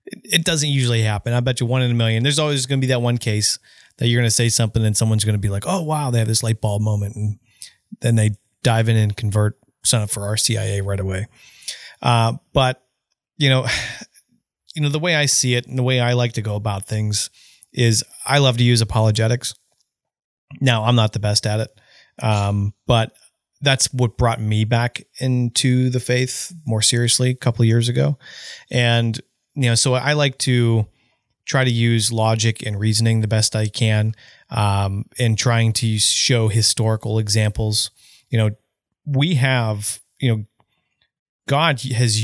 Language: English